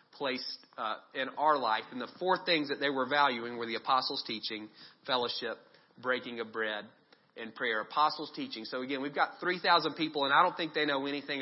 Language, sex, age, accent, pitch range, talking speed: English, male, 30-49, American, 135-180 Hz, 200 wpm